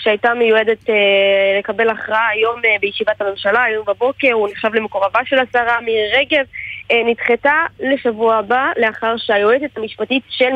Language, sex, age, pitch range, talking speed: Hebrew, female, 20-39, 215-255 Hz, 130 wpm